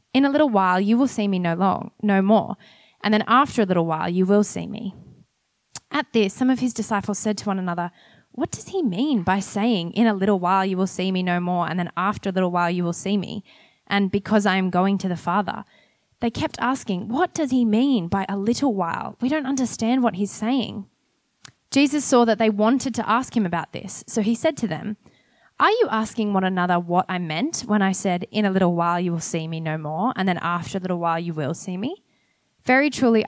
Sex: female